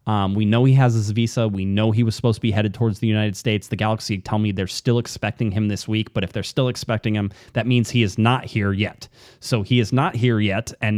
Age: 20-39